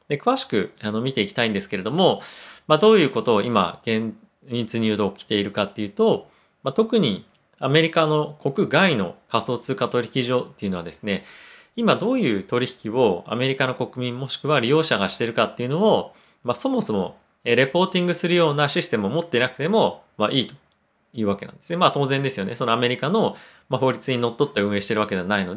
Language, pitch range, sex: Japanese, 110-170 Hz, male